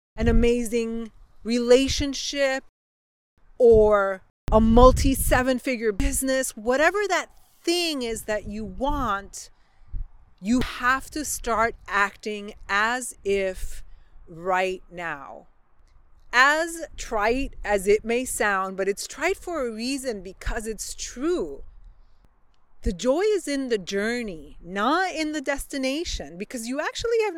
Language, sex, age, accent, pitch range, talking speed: English, female, 30-49, American, 200-280 Hz, 120 wpm